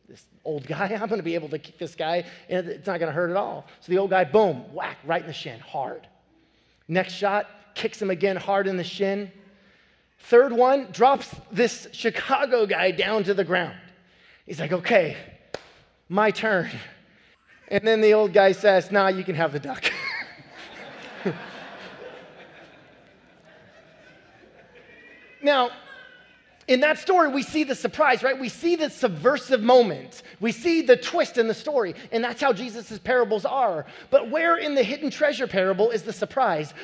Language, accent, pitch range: English, American, 180-250 Hz